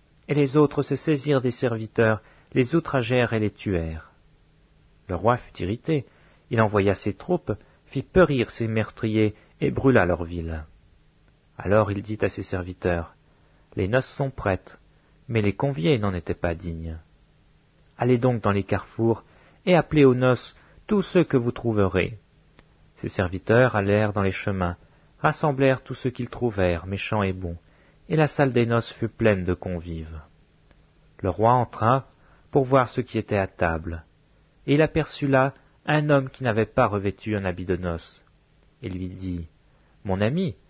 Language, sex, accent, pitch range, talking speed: French, male, French, 95-135 Hz, 165 wpm